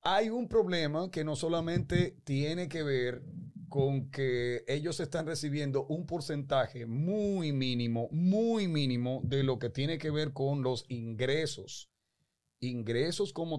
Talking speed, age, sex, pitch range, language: 135 wpm, 40-59, male, 125-170 Hz, Spanish